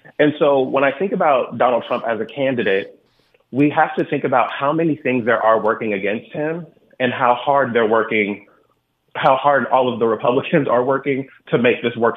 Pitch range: 110-135 Hz